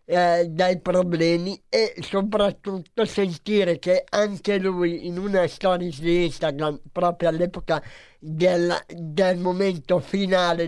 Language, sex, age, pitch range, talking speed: Italian, male, 60-79, 165-185 Hz, 110 wpm